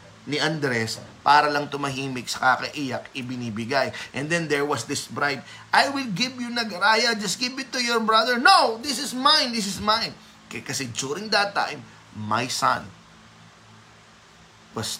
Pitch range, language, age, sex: 110-150 Hz, Filipino, 20-39, male